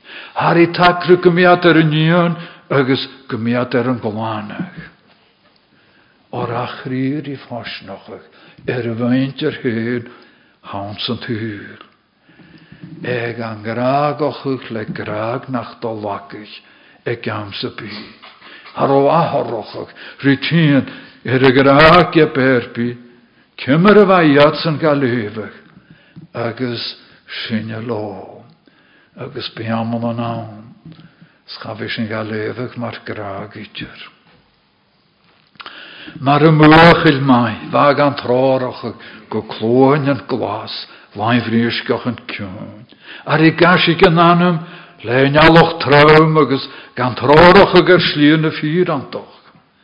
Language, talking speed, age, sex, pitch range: German, 40 wpm, 60-79, male, 115-155 Hz